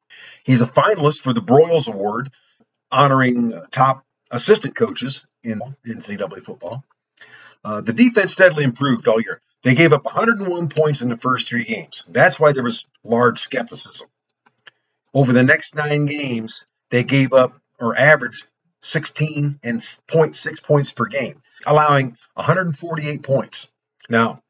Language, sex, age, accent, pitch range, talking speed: English, male, 40-59, American, 120-150 Hz, 135 wpm